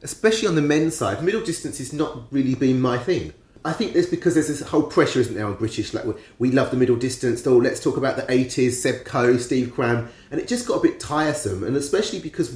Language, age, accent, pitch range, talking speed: English, 30-49, British, 120-170 Hz, 250 wpm